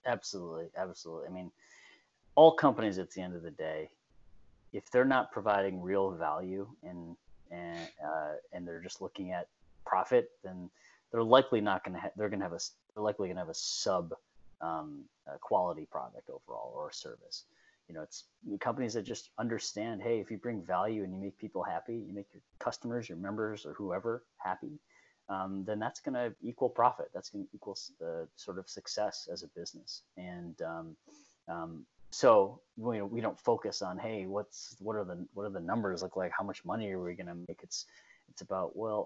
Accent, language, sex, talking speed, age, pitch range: American, English, male, 200 wpm, 30-49, 90-115 Hz